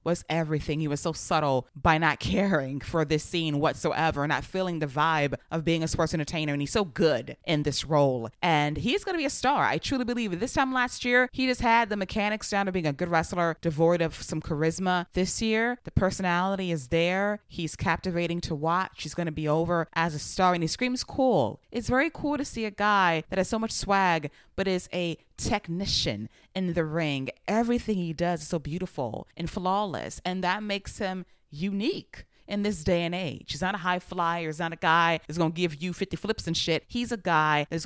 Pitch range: 155-195 Hz